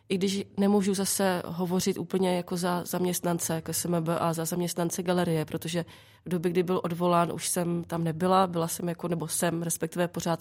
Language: Czech